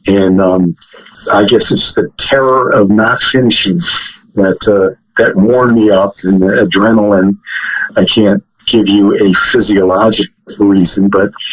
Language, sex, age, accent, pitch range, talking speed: English, male, 50-69, American, 100-115 Hz, 140 wpm